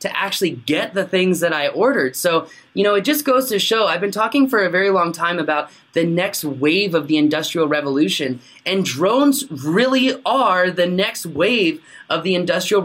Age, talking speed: 20-39, 195 wpm